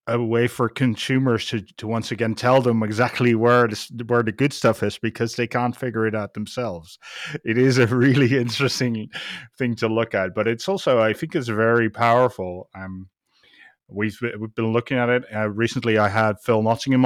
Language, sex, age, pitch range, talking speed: English, male, 30-49, 110-135 Hz, 190 wpm